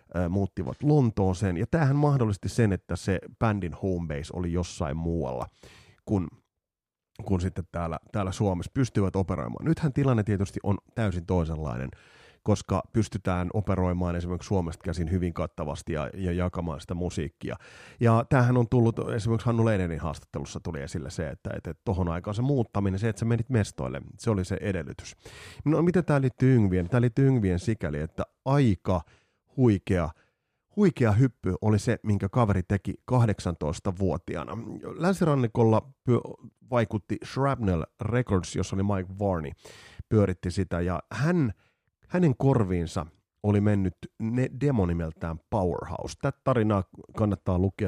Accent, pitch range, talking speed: native, 90-120 Hz, 145 wpm